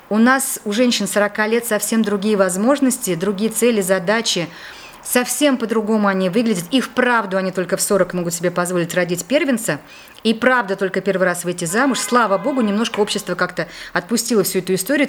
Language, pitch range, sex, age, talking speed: Russian, 195-255 Hz, female, 30-49, 170 wpm